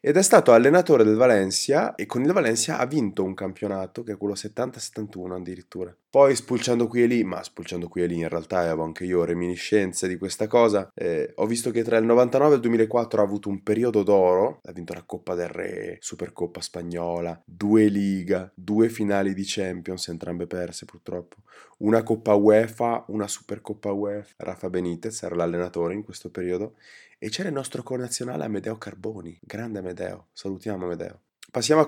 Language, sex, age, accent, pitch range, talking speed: Italian, male, 20-39, native, 90-120 Hz, 180 wpm